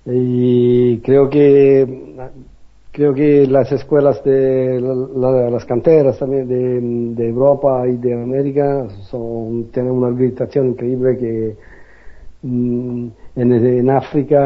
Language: English